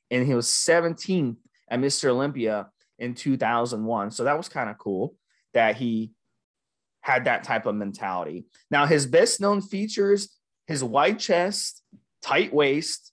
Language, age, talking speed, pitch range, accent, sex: English, 30-49, 145 wpm, 125-180 Hz, American, male